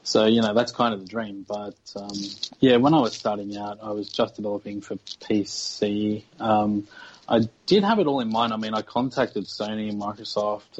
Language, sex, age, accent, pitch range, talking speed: English, male, 20-39, Australian, 105-115 Hz, 205 wpm